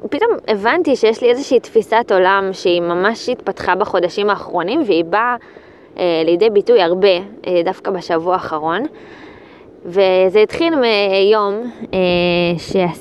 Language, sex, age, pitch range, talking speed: Hebrew, female, 20-39, 185-245 Hz, 120 wpm